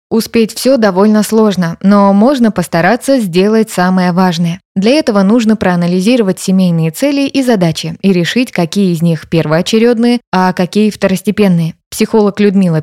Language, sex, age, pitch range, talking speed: Russian, female, 20-39, 175-225 Hz, 135 wpm